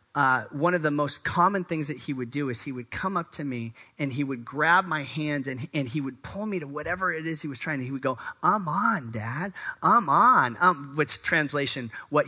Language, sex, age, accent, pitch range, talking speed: English, male, 30-49, American, 115-170 Hz, 245 wpm